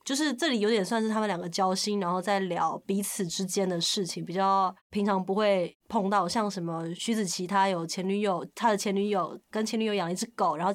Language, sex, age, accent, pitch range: Chinese, female, 20-39, native, 175-210 Hz